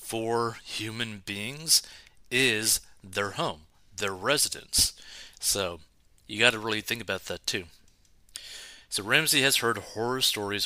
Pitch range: 95-120 Hz